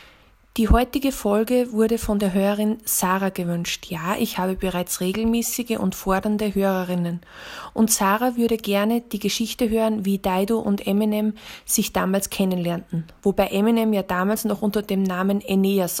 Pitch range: 185-220 Hz